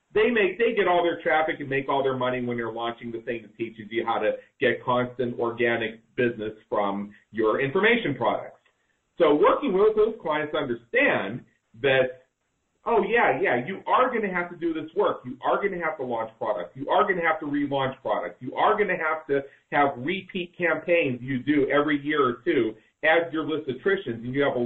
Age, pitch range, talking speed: 40-59, 125-180 Hz, 220 wpm